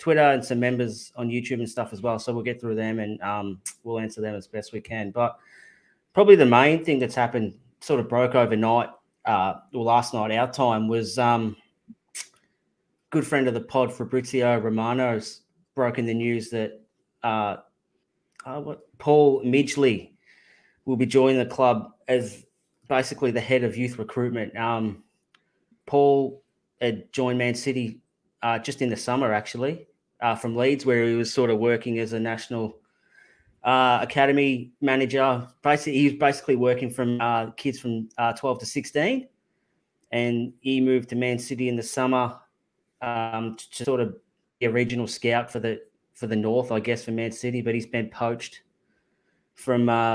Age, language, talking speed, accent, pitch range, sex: 20-39, English, 170 wpm, Australian, 115-130 Hz, male